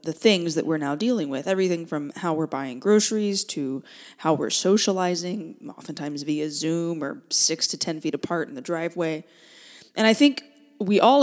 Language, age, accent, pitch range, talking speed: English, 20-39, American, 160-195 Hz, 180 wpm